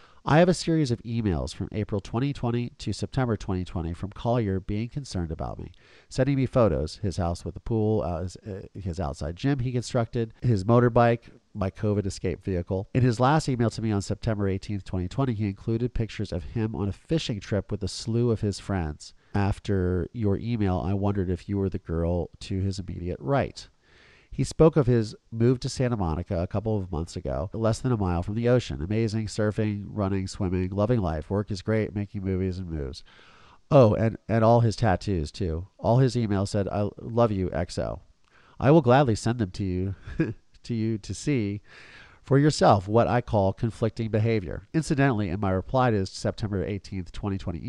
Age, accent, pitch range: 40-59, American, 95-115 Hz